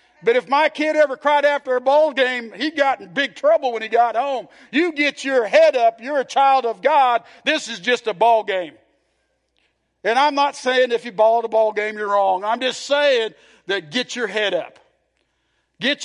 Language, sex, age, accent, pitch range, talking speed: English, male, 50-69, American, 175-260 Hz, 210 wpm